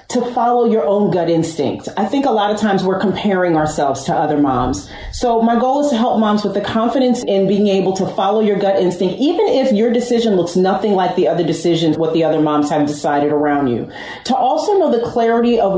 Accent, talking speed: American, 230 wpm